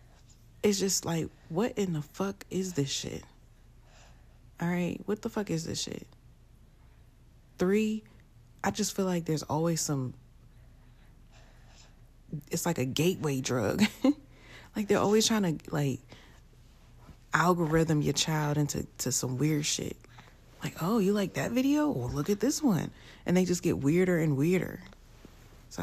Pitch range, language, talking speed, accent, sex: 125-180 Hz, English, 150 wpm, American, female